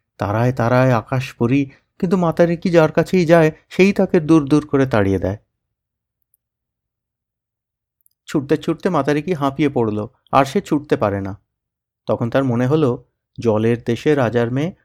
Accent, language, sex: native, Bengali, male